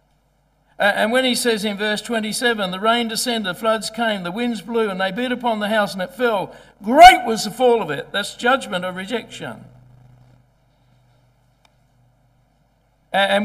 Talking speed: 160 wpm